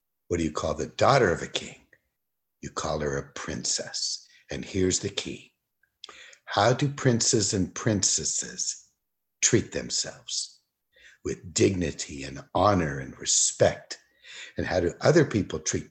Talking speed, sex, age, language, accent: 140 wpm, male, 60-79, English, American